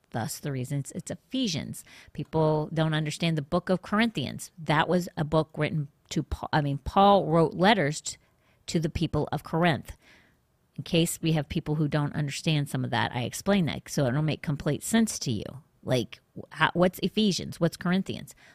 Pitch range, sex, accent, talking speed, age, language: 150-190 Hz, female, American, 180 wpm, 40-59, English